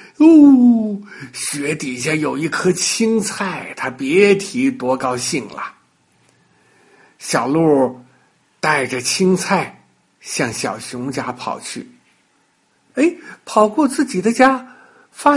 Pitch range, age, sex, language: 160-255 Hz, 60-79, male, Chinese